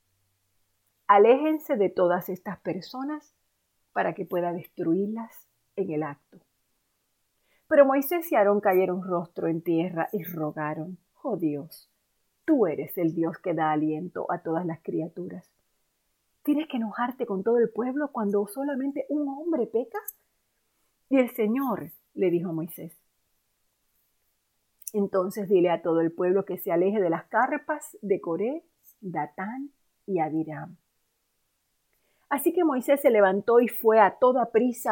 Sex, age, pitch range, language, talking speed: female, 40-59, 170-255 Hz, Spanish, 140 wpm